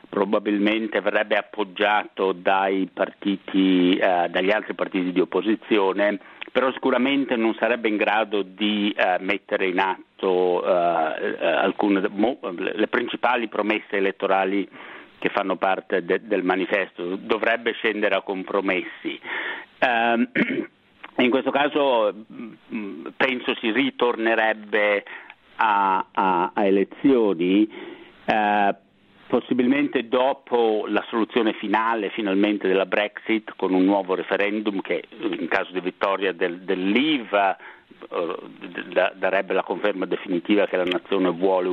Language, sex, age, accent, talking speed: Italian, male, 60-79, native, 115 wpm